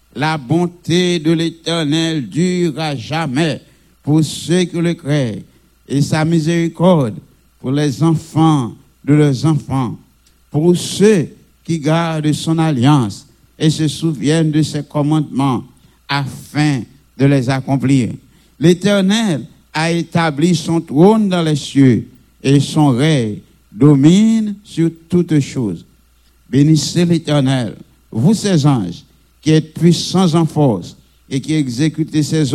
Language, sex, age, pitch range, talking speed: French, male, 60-79, 135-170 Hz, 120 wpm